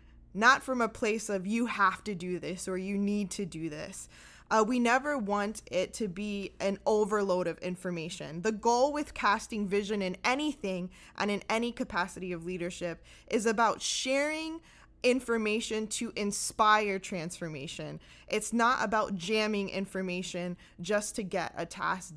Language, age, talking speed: English, 20-39, 155 wpm